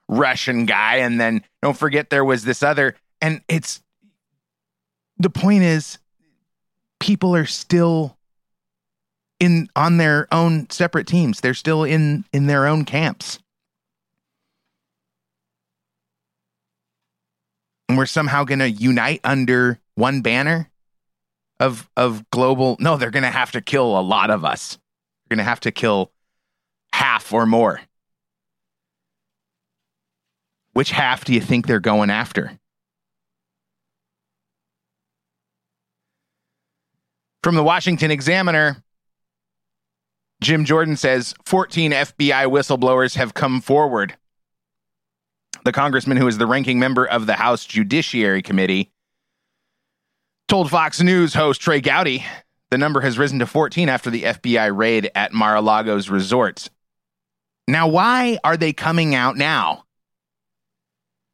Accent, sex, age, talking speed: American, male, 30-49, 115 wpm